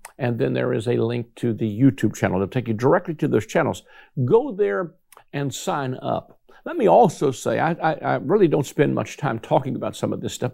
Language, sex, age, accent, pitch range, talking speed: English, male, 50-69, American, 115-165 Hz, 235 wpm